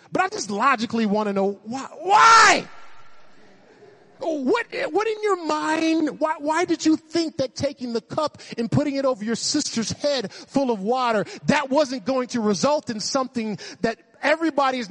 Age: 30-49